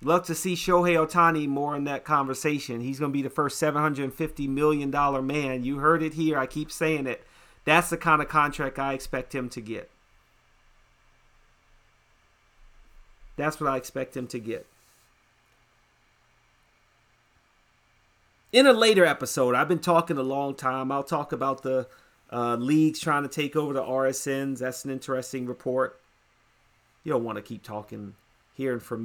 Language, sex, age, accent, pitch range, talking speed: English, male, 40-59, American, 120-170 Hz, 160 wpm